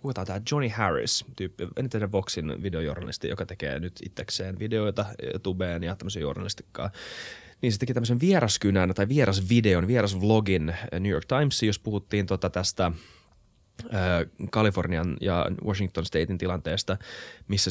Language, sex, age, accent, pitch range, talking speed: Finnish, male, 20-39, native, 90-110 Hz, 135 wpm